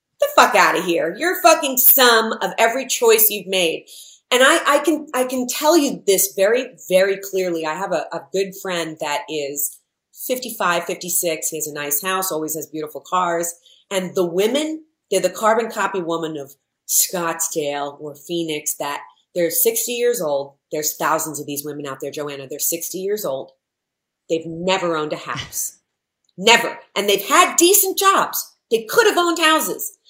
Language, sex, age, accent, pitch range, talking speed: English, female, 30-49, American, 170-255 Hz, 175 wpm